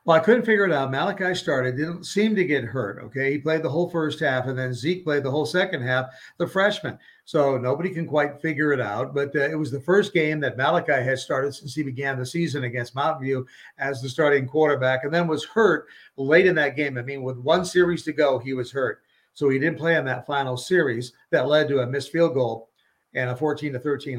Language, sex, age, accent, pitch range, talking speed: English, male, 50-69, American, 135-175 Hz, 240 wpm